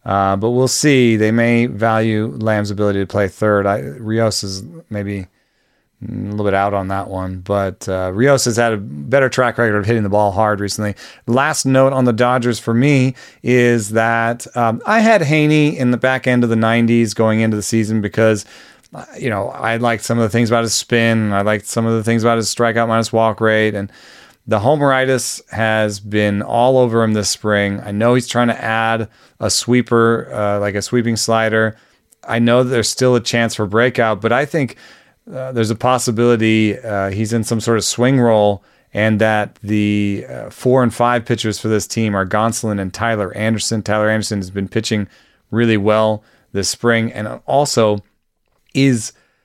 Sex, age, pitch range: male, 30-49, 105-120 Hz